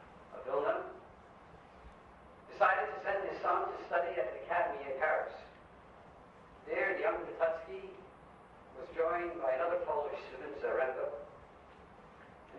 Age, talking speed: 50-69, 125 wpm